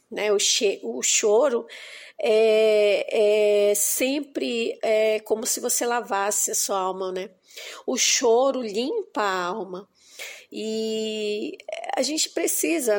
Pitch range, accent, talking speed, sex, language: 210-270 Hz, Brazilian, 120 wpm, female, Portuguese